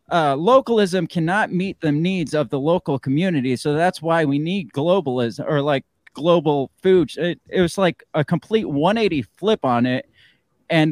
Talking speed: 170 wpm